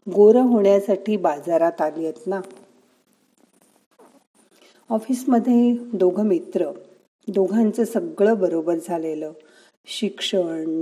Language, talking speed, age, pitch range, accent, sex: Marathi, 80 wpm, 40-59, 170-220 Hz, native, female